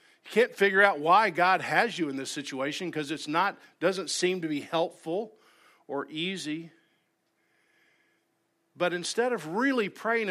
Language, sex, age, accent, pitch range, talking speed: English, male, 50-69, American, 140-190 Hz, 145 wpm